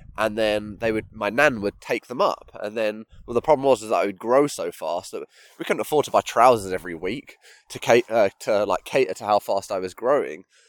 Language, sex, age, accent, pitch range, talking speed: English, male, 20-39, British, 110-165 Hz, 240 wpm